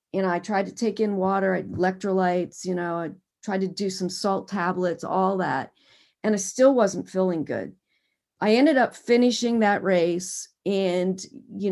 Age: 40-59